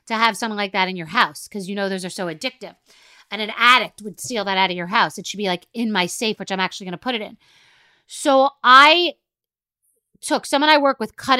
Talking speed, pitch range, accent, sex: 255 wpm, 185-235 Hz, American, female